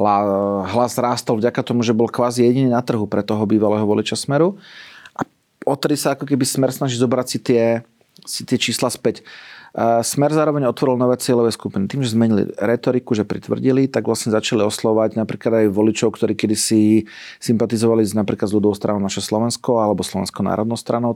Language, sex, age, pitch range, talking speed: Slovak, male, 40-59, 110-135 Hz, 175 wpm